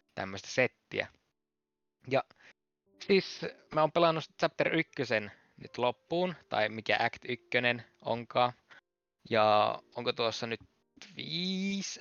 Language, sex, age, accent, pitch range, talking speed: Finnish, male, 20-39, native, 120-190 Hz, 105 wpm